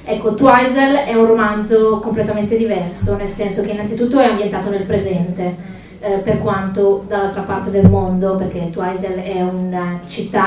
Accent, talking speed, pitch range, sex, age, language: native, 155 wpm, 195-225 Hz, female, 20-39, Italian